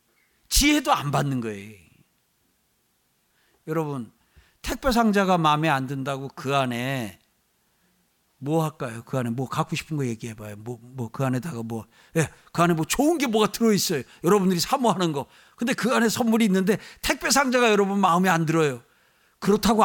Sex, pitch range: male, 155-220 Hz